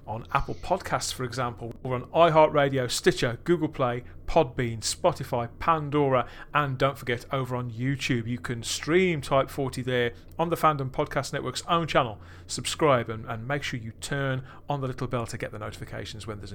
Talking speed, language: 180 wpm, English